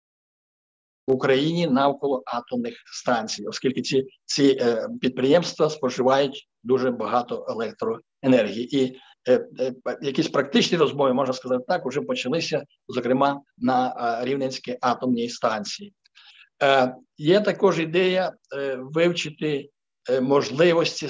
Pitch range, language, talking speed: 125-155 Hz, Ukrainian, 100 wpm